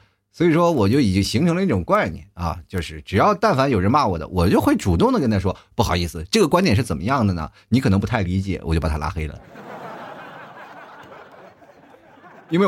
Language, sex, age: Chinese, male, 30-49